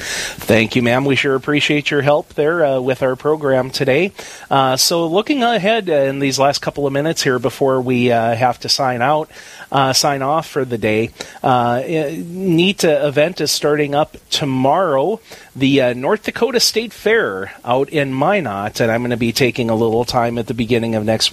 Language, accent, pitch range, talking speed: English, American, 120-150 Hz, 195 wpm